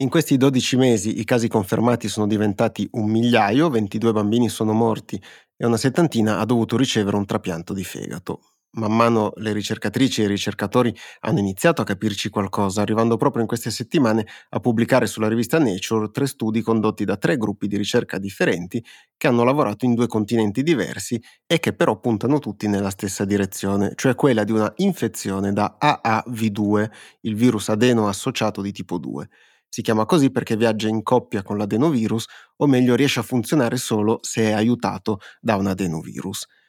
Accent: native